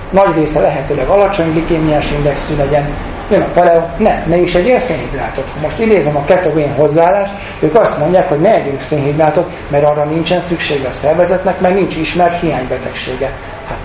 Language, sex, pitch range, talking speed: Hungarian, male, 145-170 Hz, 160 wpm